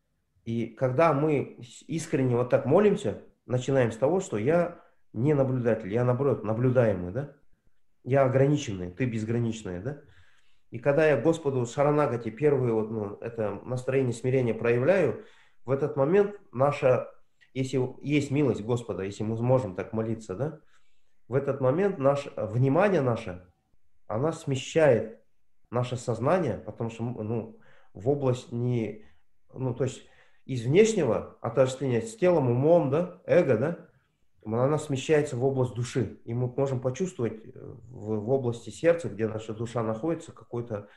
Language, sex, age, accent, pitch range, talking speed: Russian, male, 30-49, native, 110-140 Hz, 135 wpm